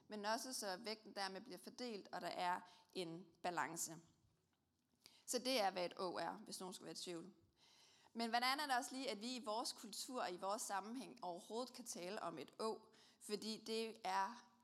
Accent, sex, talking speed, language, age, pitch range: native, female, 200 wpm, Danish, 30-49, 185-245 Hz